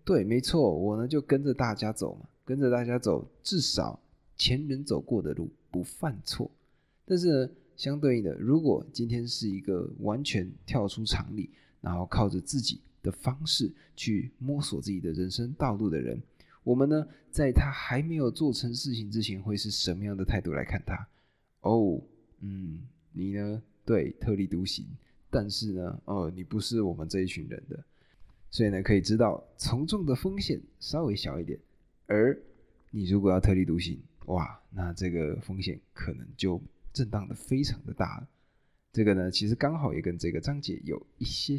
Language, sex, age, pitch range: Chinese, male, 20-39, 95-135 Hz